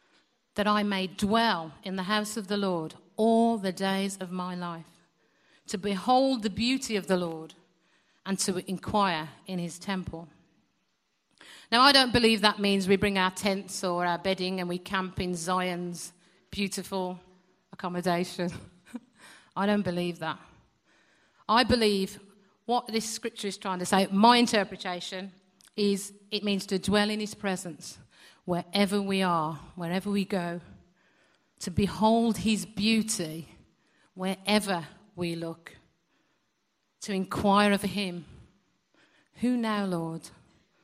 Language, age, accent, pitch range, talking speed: English, 50-69, British, 175-205 Hz, 135 wpm